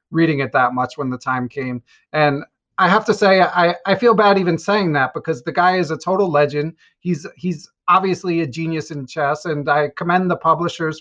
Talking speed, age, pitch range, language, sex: 215 wpm, 30-49, 140-175 Hz, English, male